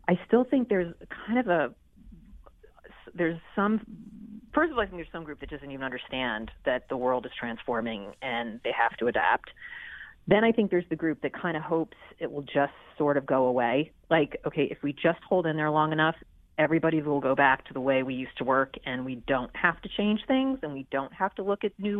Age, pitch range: 40-59, 140-200 Hz